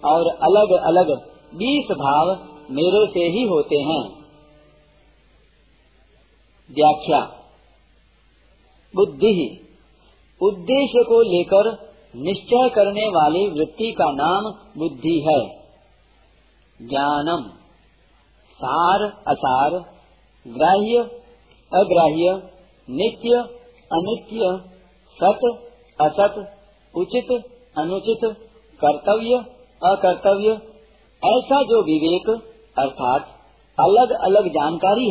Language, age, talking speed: Hindi, 50-69, 75 wpm